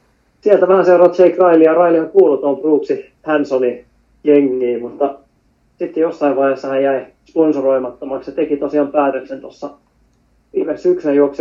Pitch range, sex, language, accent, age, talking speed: 130-145 Hz, male, Finnish, native, 20-39, 140 wpm